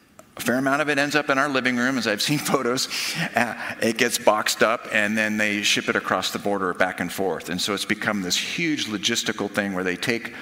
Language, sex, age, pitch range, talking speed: English, male, 50-69, 100-120 Hz, 235 wpm